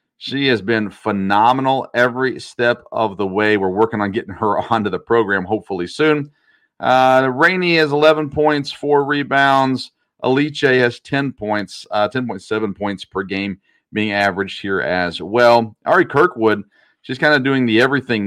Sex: male